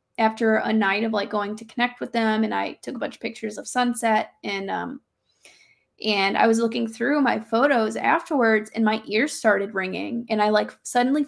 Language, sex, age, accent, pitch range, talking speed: English, female, 10-29, American, 210-270 Hz, 200 wpm